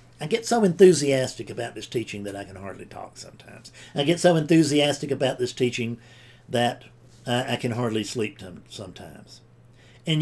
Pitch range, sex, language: 120-180 Hz, male, English